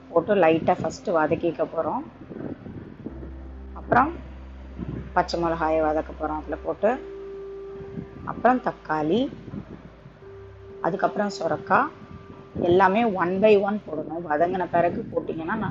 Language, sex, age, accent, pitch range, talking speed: Tamil, female, 20-39, native, 130-190 Hz, 90 wpm